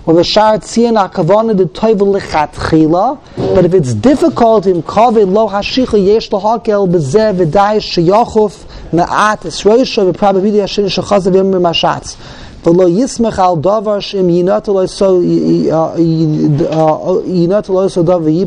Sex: male